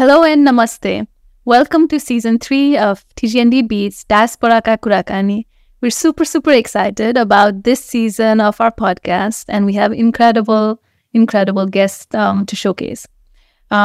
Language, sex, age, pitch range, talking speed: English, female, 20-39, 205-250 Hz, 140 wpm